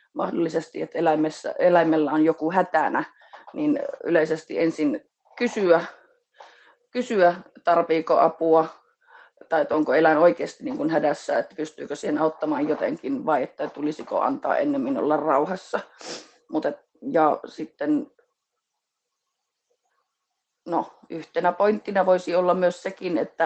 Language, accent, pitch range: Finnish, native, 160-205 Hz